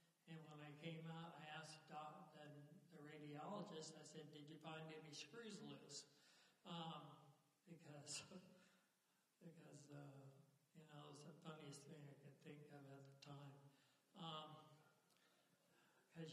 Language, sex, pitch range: English, male, 150-170 Hz